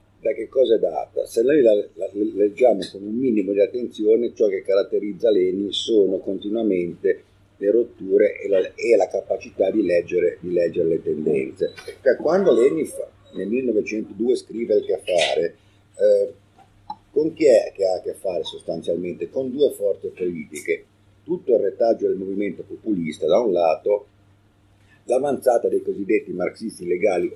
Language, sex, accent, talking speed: Italian, male, native, 145 wpm